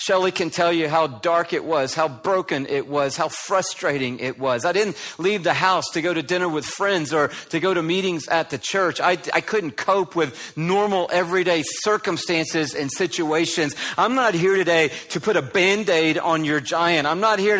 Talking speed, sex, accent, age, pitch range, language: 200 wpm, male, American, 50-69, 165-205 Hz, English